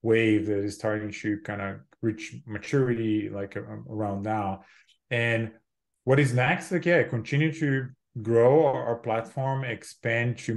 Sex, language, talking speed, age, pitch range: male, English, 155 wpm, 20-39, 105-120 Hz